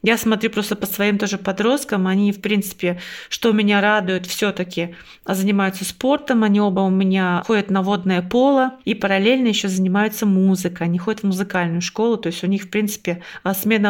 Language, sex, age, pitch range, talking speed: Russian, female, 30-49, 195-235 Hz, 175 wpm